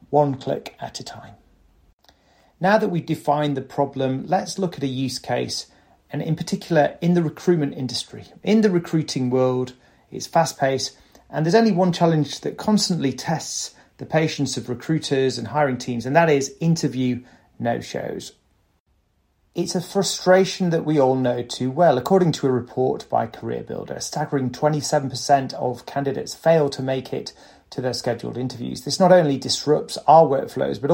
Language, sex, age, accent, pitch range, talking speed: English, male, 30-49, British, 130-160 Hz, 165 wpm